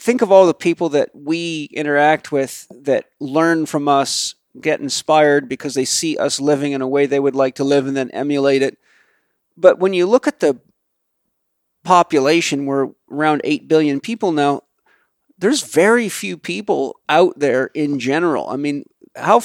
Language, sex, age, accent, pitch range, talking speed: English, male, 40-59, American, 140-180 Hz, 175 wpm